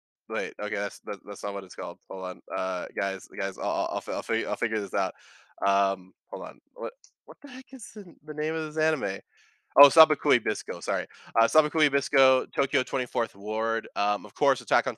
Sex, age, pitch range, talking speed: male, 20-39, 105-145 Hz, 190 wpm